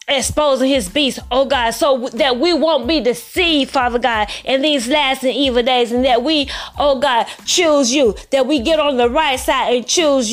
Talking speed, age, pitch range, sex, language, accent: 205 wpm, 20-39, 255-315 Hz, female, English, American